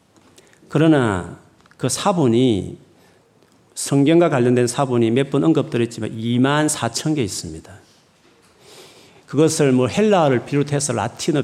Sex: male